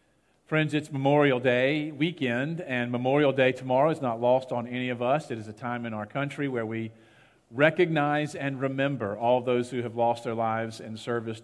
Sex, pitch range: male, 115-140 Hz